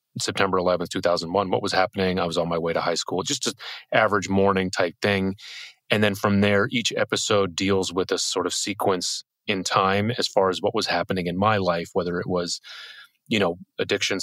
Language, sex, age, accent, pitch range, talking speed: English, male, 30-49, American, 85-100 Hz, 205 wpm